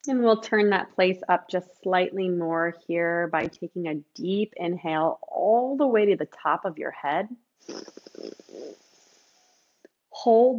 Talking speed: 140 wpm